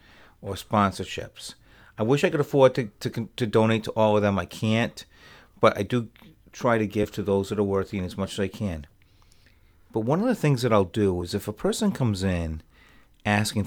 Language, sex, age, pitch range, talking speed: English, male, 40-59, 100-140 Hz, 215 wpm